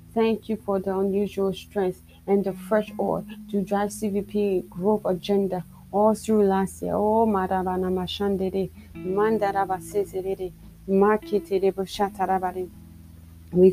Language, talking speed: English, 85 wpm